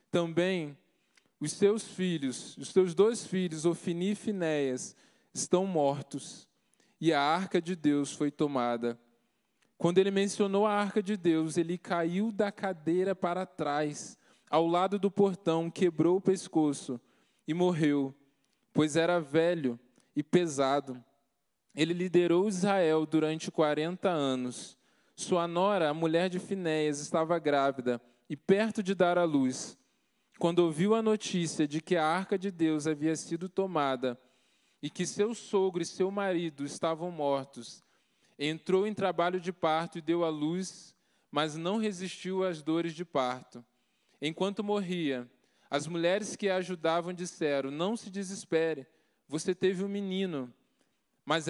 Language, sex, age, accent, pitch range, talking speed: Portuguese, male, 20-39, Brazilian, 150-190 Hz, 140 wpm